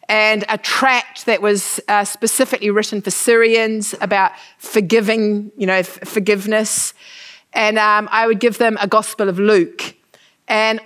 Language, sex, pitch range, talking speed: English, female, 185-220 Hz, 145 wpm